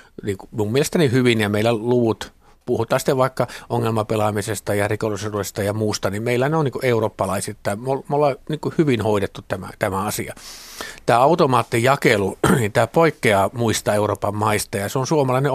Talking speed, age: 160 wpm, 50-69